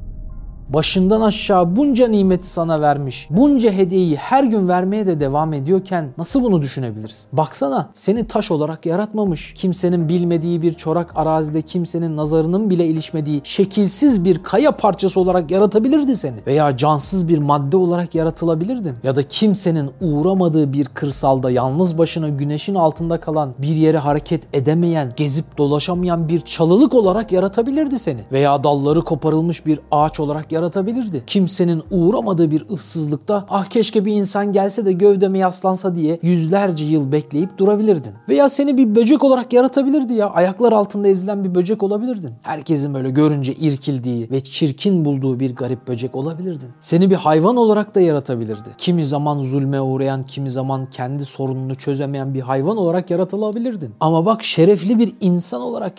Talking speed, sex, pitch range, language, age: 150 wpm, male, 150-195 Hz, Turkish, 40-59